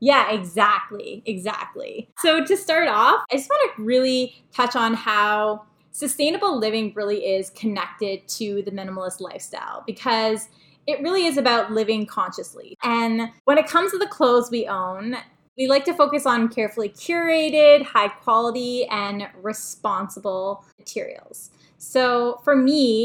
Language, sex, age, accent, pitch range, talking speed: English, female, 10-29, American, 205-265 Hz, 140 wpm